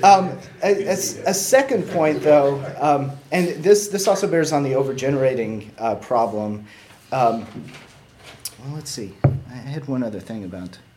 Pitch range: 110-145 Hz